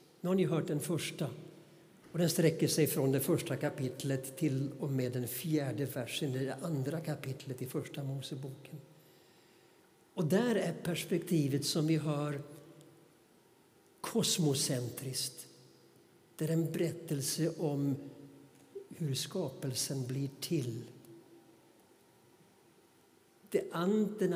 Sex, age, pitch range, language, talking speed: male, 60-79, 140-175 Hz, Swedish, 110 wpm